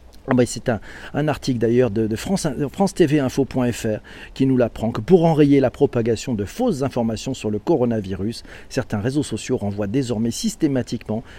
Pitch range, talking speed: 120-155 Hz, 170 wpm